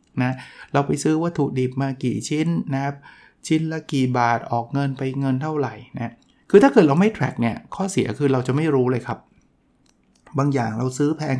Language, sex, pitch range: Thai, male, 115-145 Hz